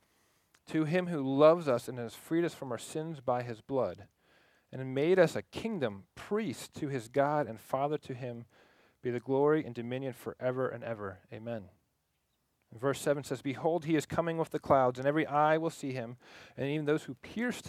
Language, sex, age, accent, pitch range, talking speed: English, male, 40-59, American, 125-160 Hz, 200 wpm